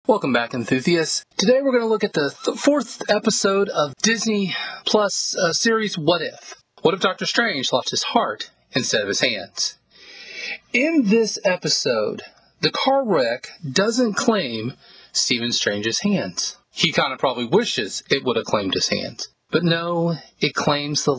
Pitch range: 135-185 Hz